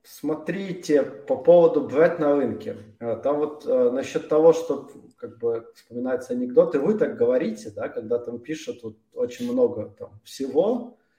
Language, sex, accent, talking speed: Russian, male, native, 135 wpm